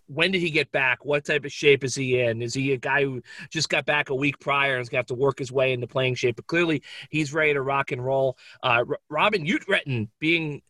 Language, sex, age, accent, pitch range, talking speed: English, male, 30-49, American, 135-155 Hz, 265 wpm